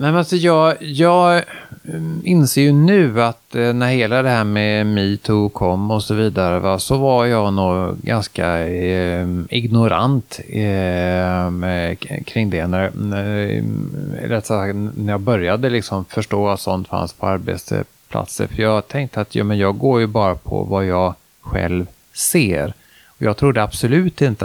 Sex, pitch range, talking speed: male, 95-120 Hz, 125 wpm